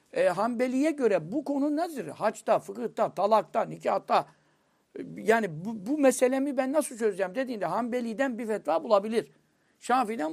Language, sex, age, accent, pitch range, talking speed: Turkish, male, 60-79, native, 195-265 Hz, 135 wpm